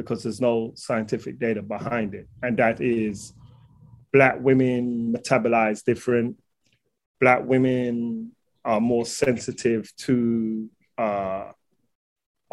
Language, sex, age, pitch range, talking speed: English, male, 30-49, 115-135 Hz, 100 wpm